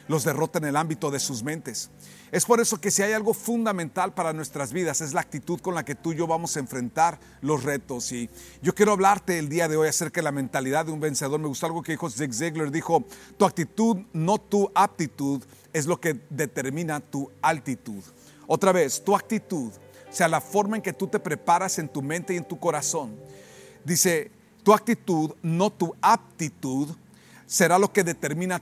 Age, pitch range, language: 40-59, 150-195 Hz, Spanish